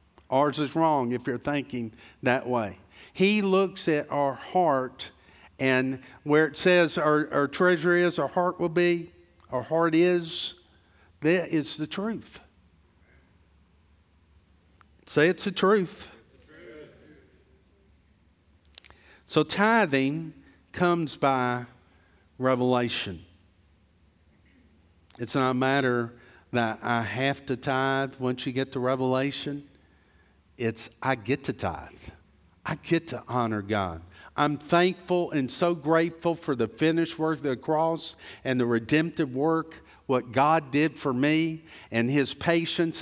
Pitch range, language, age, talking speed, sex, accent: 115-170 Hz, English, 50-69, 125 wpm, male, American